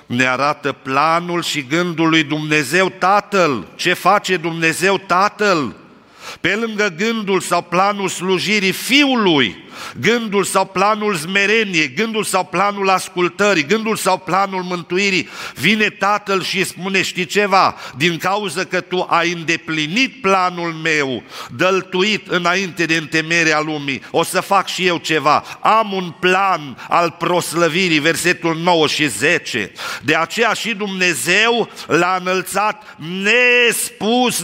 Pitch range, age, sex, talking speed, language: 175-225 Hz, 50-69, male, 125 wpm, Romanian